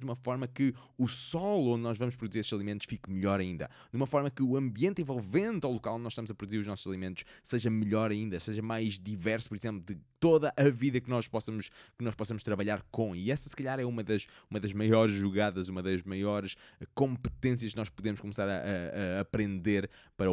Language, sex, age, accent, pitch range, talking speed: Portuguese, male, 20-39, Brazilian, 95-125 Hz, 225 wpm